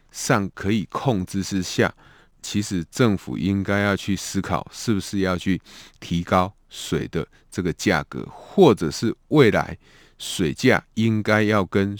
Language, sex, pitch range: Chinese, male, 85-110 Hz